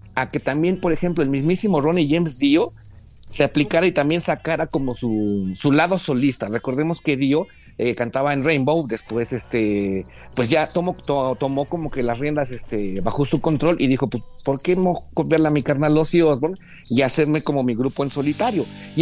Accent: Mexican